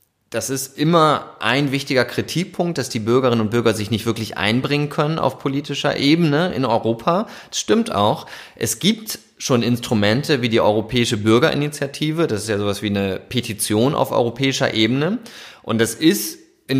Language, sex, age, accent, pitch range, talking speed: German, male, 30-49, German, 110-135 Hz, 165 wpm